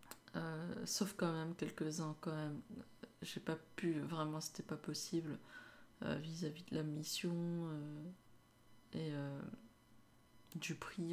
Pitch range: 150-175 Hz